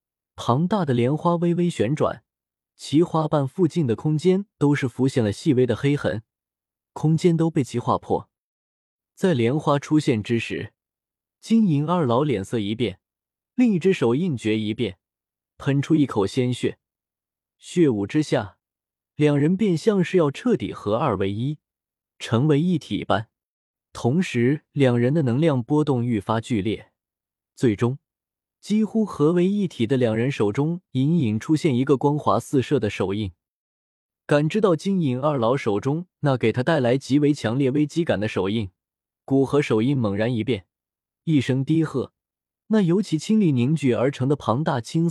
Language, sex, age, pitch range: Chinese, male, 20-39, 110-160 Hz